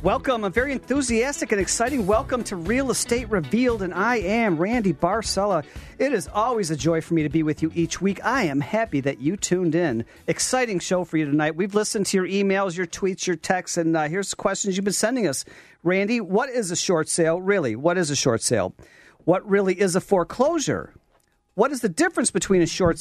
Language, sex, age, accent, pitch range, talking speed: English, male, 40-59, American, 160-215 Hz, 215 wpm